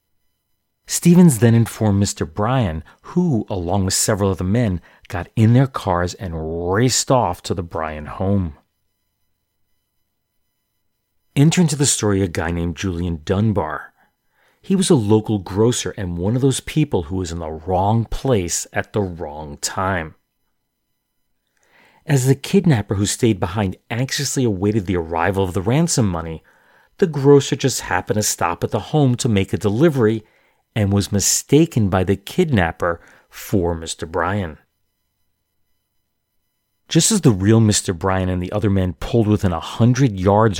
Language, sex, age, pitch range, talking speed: English, male, 40-59, 90-120 Hz, 150 wpm